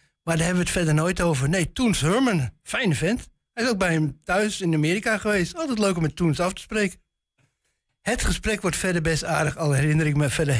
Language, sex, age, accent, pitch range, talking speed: Dutch, male, 60-79, Dutch, 140-190 Hz, 230 wpm